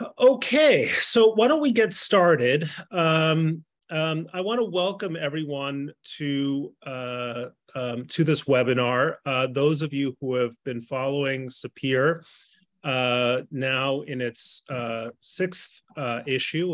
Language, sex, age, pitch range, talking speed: English, male, 30-49, 125-160 Hz, 135 wpm